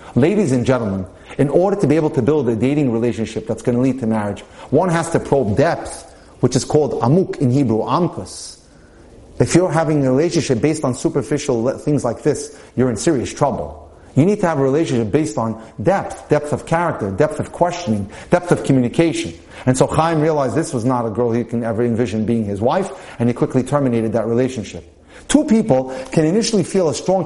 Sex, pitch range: male, 125-180 Hz